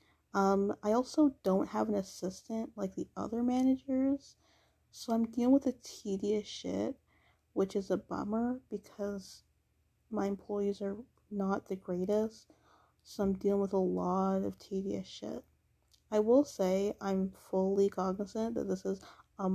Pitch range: 185-235 Hz